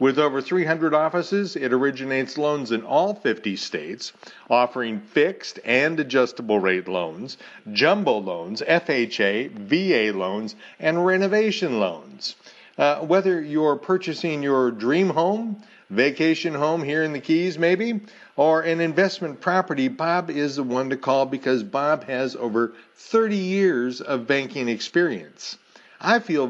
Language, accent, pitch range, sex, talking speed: English, American, 115-165 Hz, male, 135 wpm